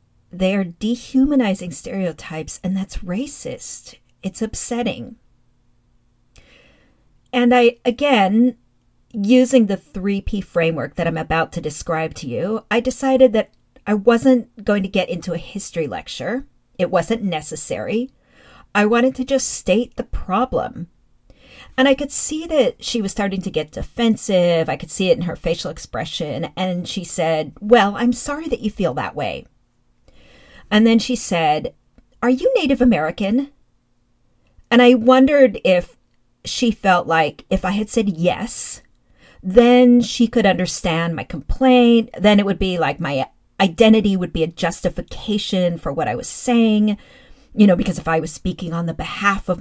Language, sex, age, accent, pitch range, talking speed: English, female, 40-59, American, 170-240 Hz, 155 wpm